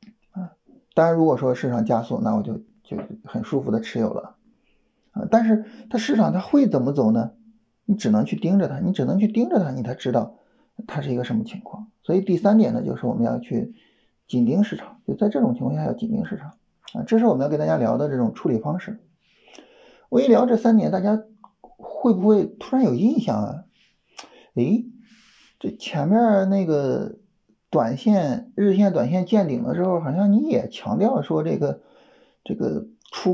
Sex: male